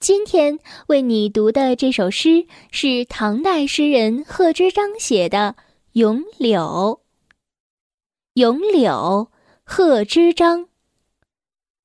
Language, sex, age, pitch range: Chinese, female, 10-29, 245-350 Hz